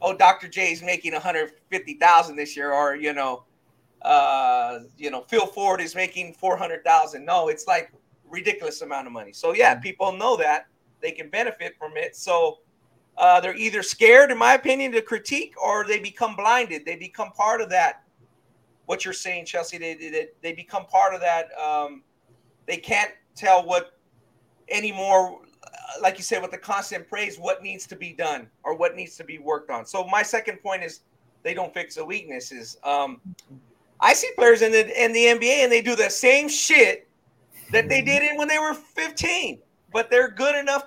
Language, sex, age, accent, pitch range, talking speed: English, male, 30-49, American, 175-270 Hz, 190 wpm